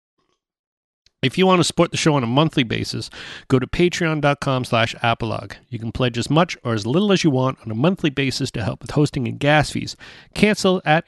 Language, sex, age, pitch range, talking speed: English, male, 30-49, 120-155 Hz, 210 wpm